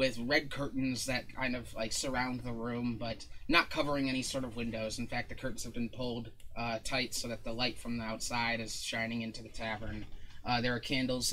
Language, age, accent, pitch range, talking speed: English, 20-39, American, 115-130 Hz, 220 wpm